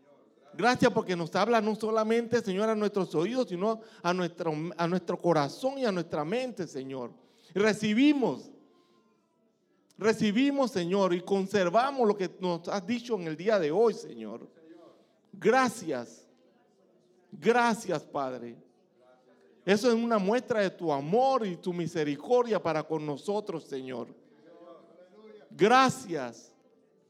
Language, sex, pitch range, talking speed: English, male, 165-230 Hz, 120 wpm